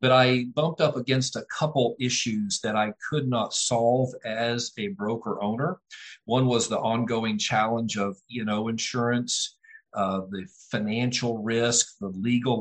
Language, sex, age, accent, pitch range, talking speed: English, male, 50-69, American, 115-140 Hz, 145 wpm